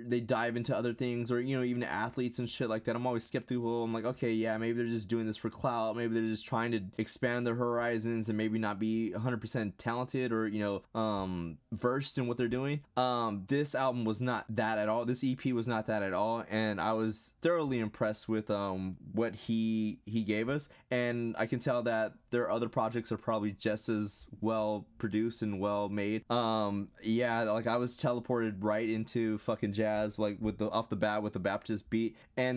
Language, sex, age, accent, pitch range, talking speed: English, male, 20-39, American, 110-125 Hz, 215 wpm